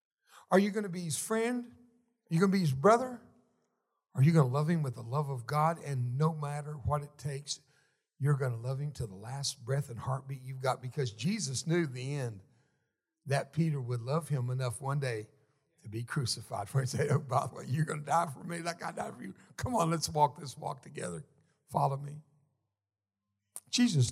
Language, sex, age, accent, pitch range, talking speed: English, male, 60-79, American, 135-185 Hz, 220 wpm